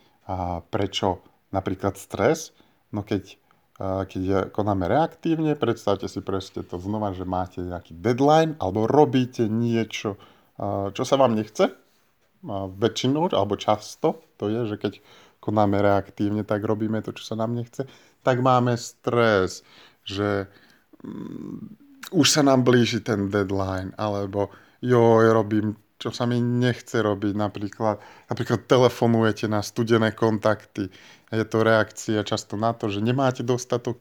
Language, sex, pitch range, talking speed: Slovak, male, 100-120 Hz, 130 wpm